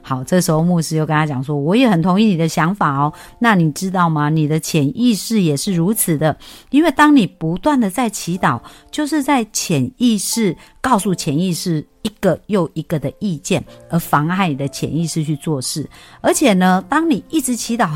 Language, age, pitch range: Chinese, 50-69, 150-205 Hz